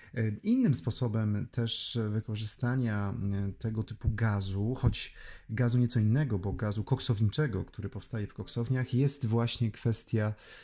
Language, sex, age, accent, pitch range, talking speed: Polish, male, 30-49, native, 105-120 Hz, 120 wpm